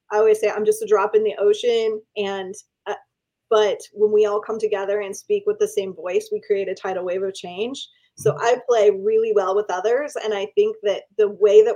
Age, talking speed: 20-39, 230 wpm